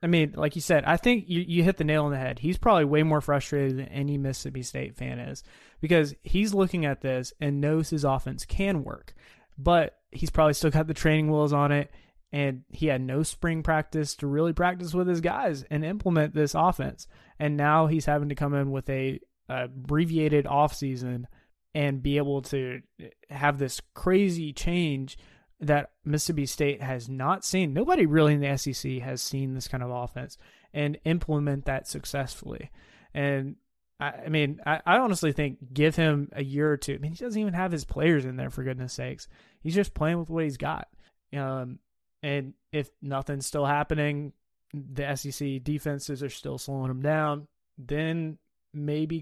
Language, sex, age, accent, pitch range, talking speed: English, male, 20-39, American, 135-160 Hz, 185 wpm